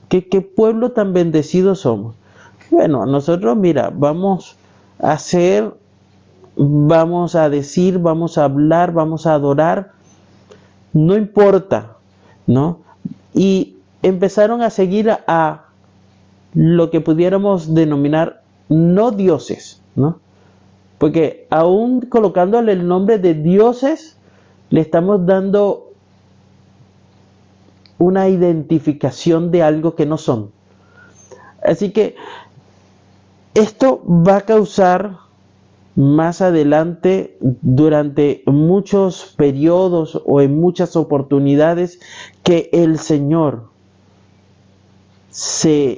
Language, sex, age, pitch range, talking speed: Spanish, male, 50-69, 110-180 Hz, 95 wpm